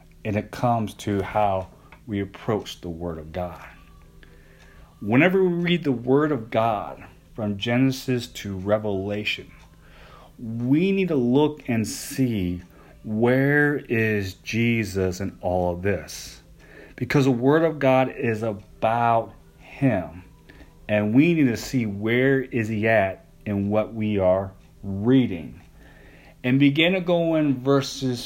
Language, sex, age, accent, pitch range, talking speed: English, male, 40-59, American, 100-130 Hz, 135 wpm